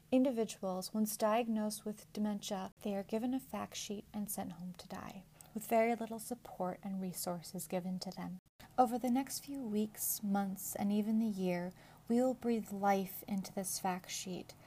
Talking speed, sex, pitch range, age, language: 175 wpm, female, 185-220 Hz, 30-49, English